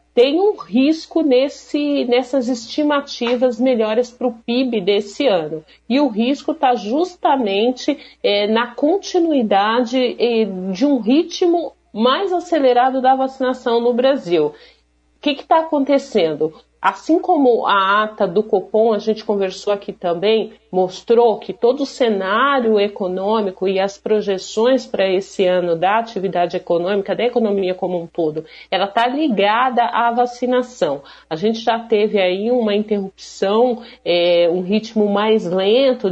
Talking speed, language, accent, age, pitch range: 135 wpm, Portuguese, Brazilian, 40-59, 195-255 Hz